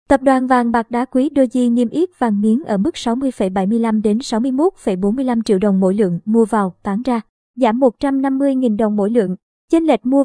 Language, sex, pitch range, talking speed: Vietnamese, male, 210-260 Hz, 185 wpm